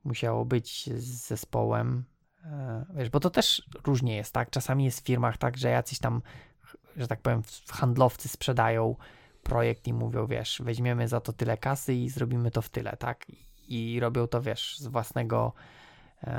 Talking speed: 170 wpm